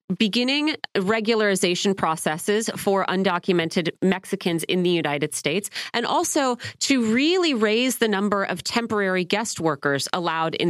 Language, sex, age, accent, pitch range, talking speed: English, female, 30-49, American, 165-215 Hz, 130 wpm